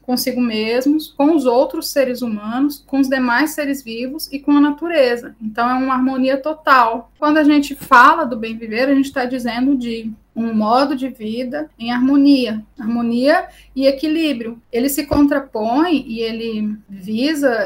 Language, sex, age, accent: Portuguese, female, 20-39, Brazilian